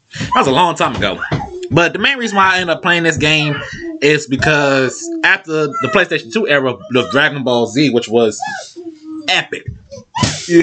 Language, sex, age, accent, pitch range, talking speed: English, male, 20-39, American, 135-190 Hz, 180 wpm